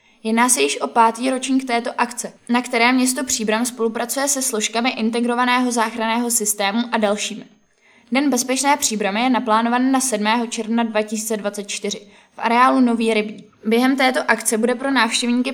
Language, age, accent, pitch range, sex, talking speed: Czech, 20-39, native, 215-245 Hz, female, 150 wpm